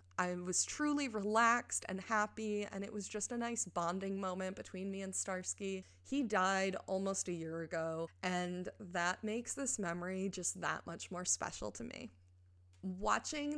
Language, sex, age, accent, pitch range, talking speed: English, female, 20-39, American, 175-220 Hz, 165 wpm